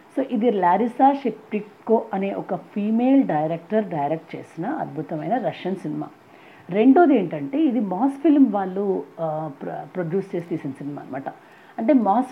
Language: Telugu